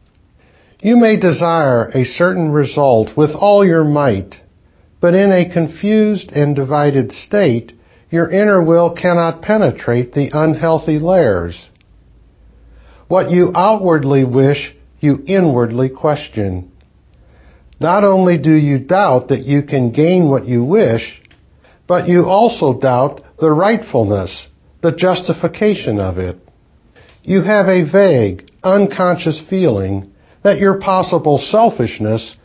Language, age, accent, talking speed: English, 60-79, American, 120 wpm